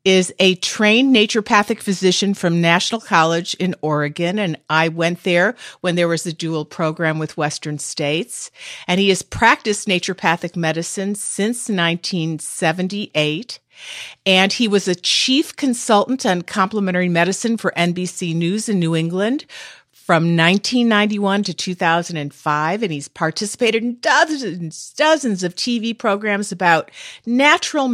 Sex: female